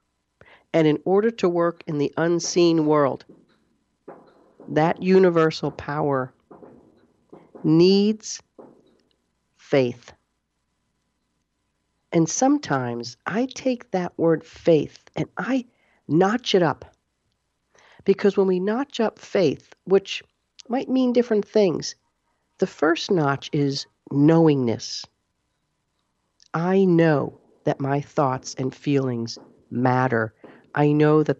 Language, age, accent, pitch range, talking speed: English, 40-59, American, 130-190 Hz, 100 wpm